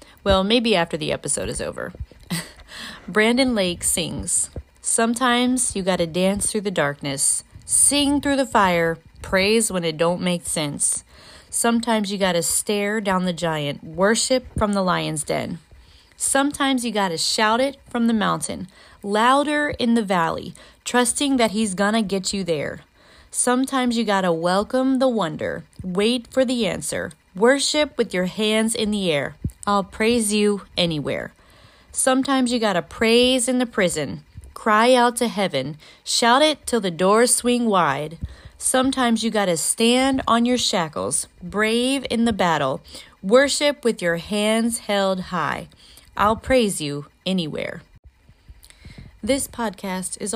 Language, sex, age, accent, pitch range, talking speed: English, female, 30-49, American, 180-245 Hz, 155 wpm